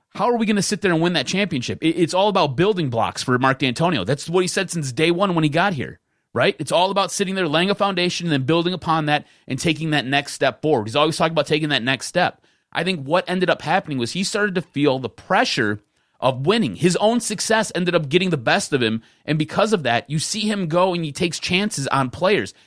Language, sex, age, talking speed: English, male, 30-49, 255 wpm